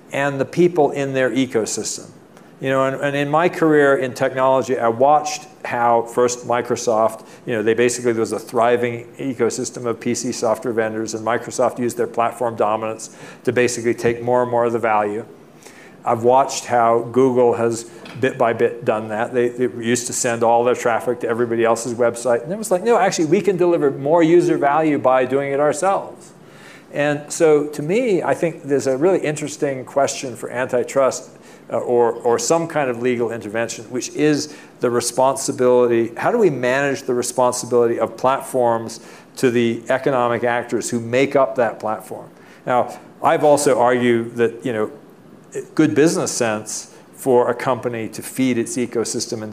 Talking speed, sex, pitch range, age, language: 175 wpm, male, 115-140 Hz, 50-69, English